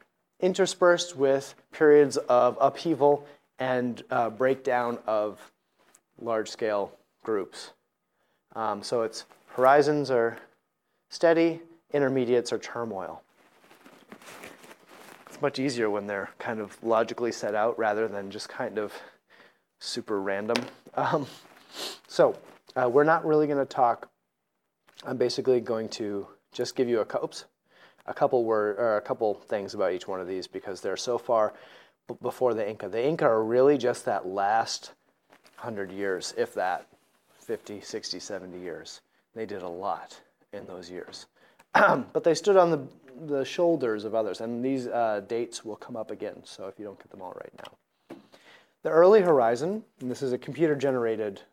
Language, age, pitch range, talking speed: English, 30-49, 110-145 Hz, 155 wpm